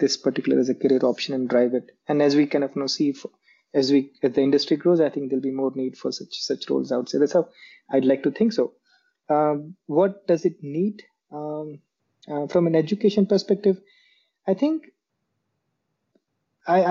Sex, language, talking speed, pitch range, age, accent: male, English, 200 wpm, 140-170 Hz, 20-39, Indian